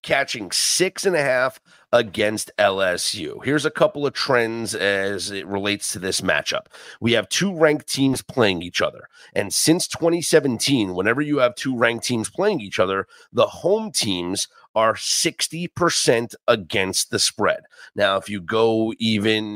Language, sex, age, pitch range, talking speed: English, male, 30-49, 110-165 Hz, 155 wpm